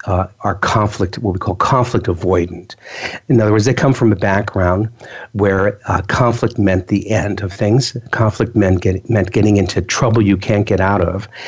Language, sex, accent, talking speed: English, male, American, 185 wpm